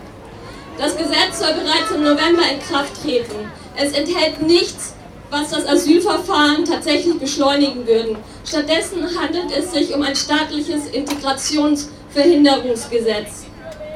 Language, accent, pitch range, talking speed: German, German, 285-330 Hz, 110 wpm